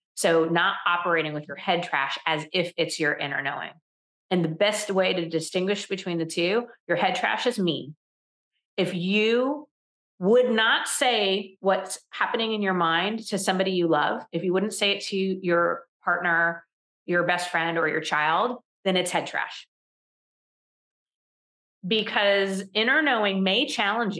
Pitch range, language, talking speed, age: 155-190 Hz, English, 160 wpm, 40-59